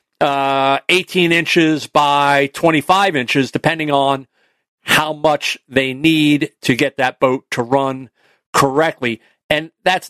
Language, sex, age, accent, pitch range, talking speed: English, male, 40-59, American, 135-170 Hz, 125 wpm